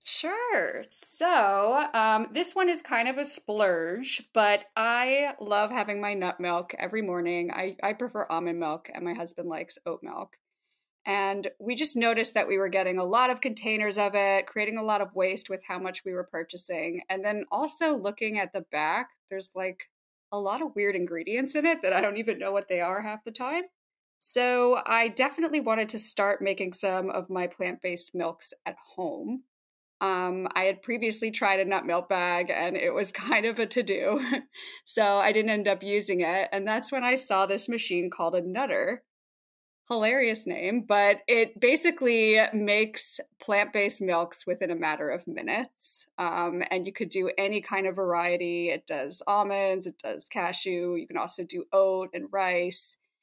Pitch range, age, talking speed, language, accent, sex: 185-235 Hz, 20-39, 185 wpm, English, American, female